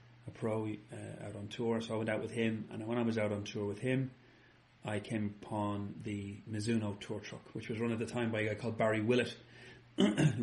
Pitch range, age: 105-120 Hz, 30-49